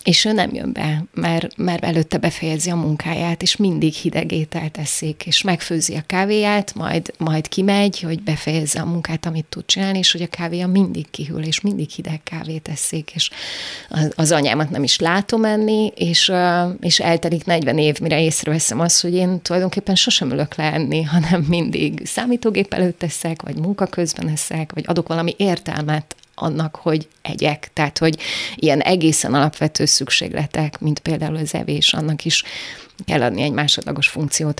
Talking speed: 165 wpm